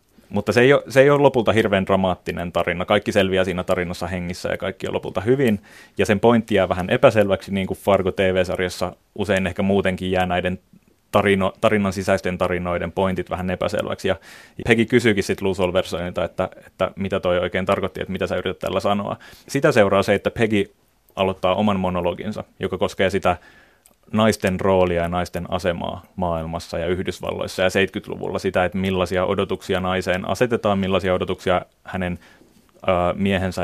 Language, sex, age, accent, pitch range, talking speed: Finnish, male, 30-49, native, 90-105 Hz, 160 wpm